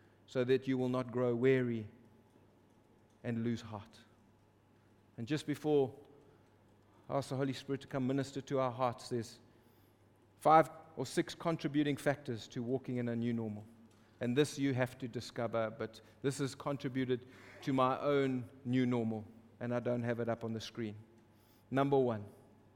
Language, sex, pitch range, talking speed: English, male, 110-140 Hz, 165 wpm